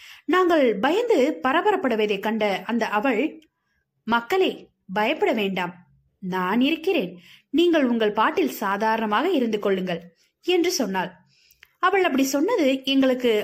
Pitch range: 220-325 Hz